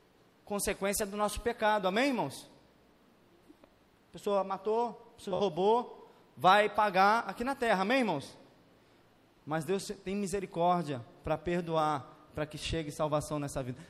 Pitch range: 155-210 Hz